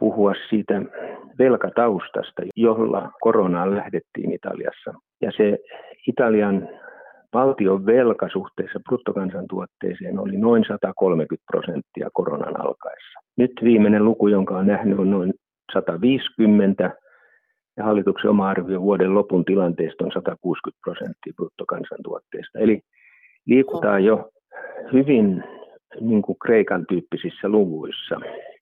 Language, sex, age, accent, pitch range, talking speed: Finnish, male, 50-69, native, 100-125 Hz, 95 wpm